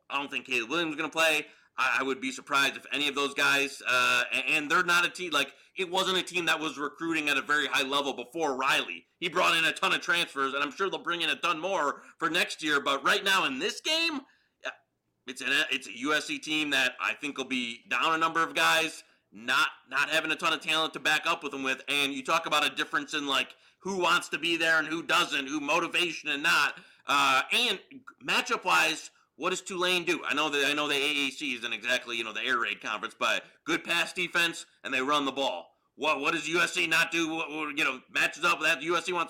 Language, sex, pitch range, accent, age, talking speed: English, male, 140-175 Hz, American, 30-49, 245 wpm